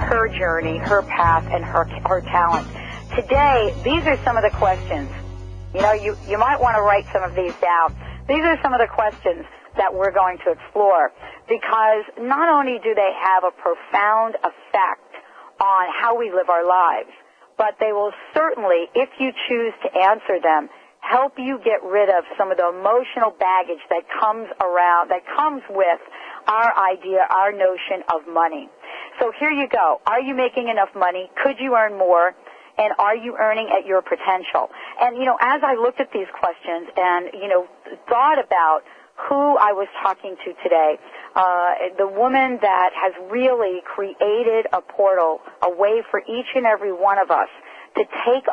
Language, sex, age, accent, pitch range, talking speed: English, female, 50-69, American, 180-240 Hz, 180 wpm